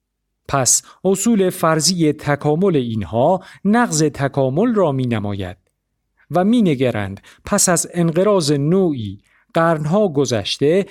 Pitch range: 130-180 Hz